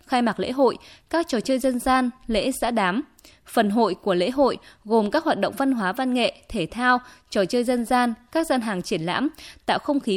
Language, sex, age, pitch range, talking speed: Vietnamese, female, 20-39, 195-265 Hz, 230 wpm